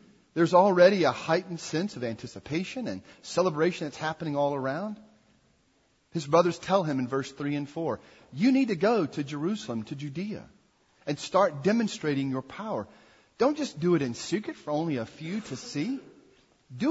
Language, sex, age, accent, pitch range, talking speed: English, male, 40-59, American, 135-200 Hz, 170 wpm